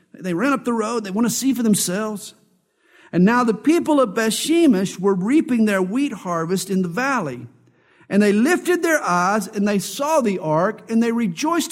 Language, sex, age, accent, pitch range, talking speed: English, male, 50-69, American, 175-240 Hz, 195 wpm